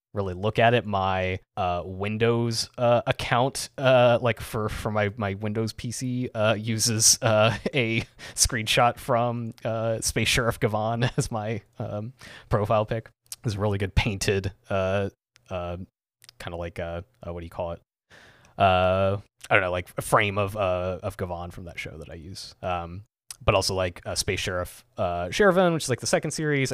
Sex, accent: male, American